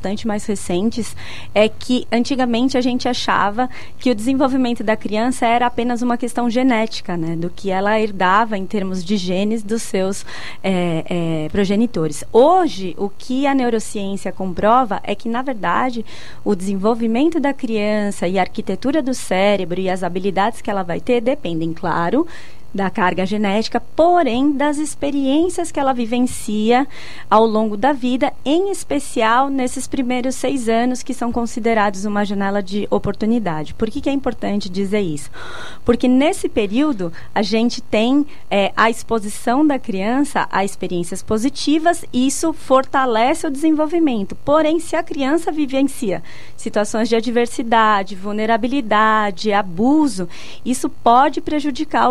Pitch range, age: 205-265 Hz, 20-39